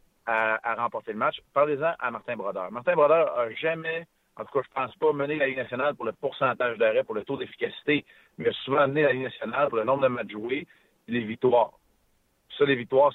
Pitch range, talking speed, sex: 120-155 Hz, 230 wpm, male